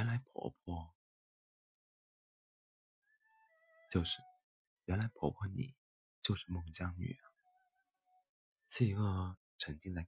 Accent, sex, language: native, male, Chinese